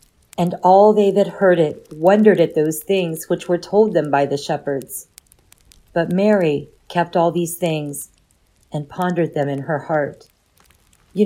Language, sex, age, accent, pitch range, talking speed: English, female, 40-59, American, 155-190 Hz, 160 wpm